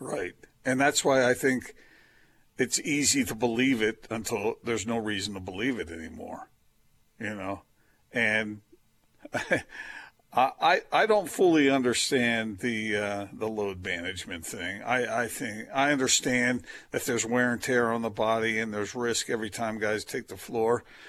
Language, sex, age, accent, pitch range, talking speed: English, male, 50-69, American, 110-135 Hz, 160 wpm